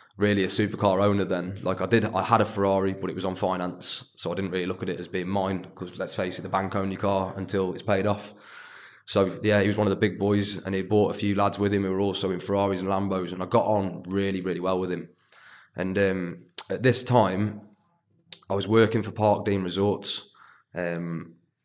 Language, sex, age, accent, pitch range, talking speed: English, male, 20-39, British, 95-105 Hz, 235 wpm